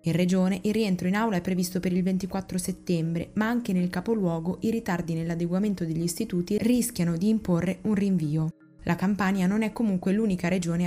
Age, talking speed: 20-39, 180 wpm